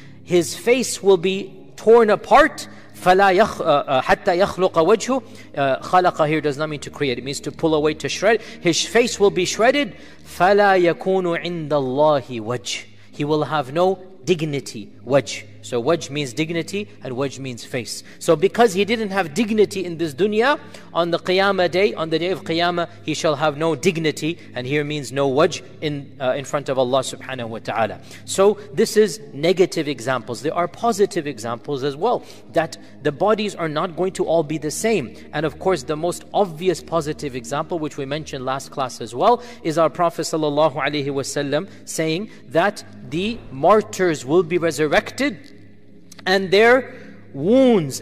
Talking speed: 170 wpm